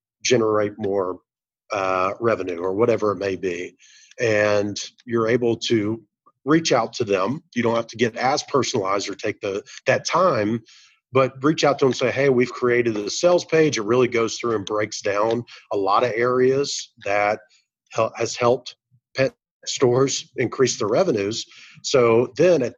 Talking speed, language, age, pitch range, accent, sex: 170 wpm, English, 40-59, 110-140 Hz, American, male